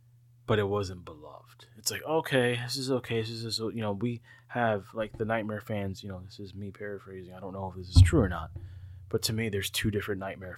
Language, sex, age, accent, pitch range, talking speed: English, male, 20-39, American, 105-120 Hz, 240 wpm